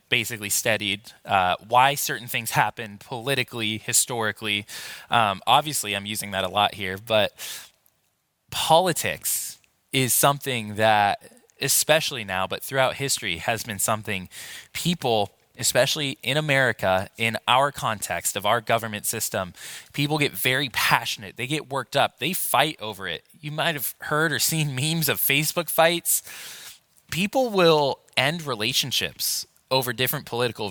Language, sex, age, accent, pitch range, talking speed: English, male, 20-39, American, 110-145 Hz, 135 wpm